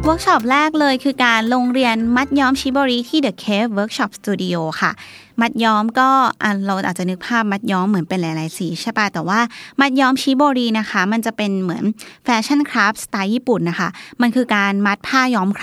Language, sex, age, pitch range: Thai, female, 20-39, 190-235 Hz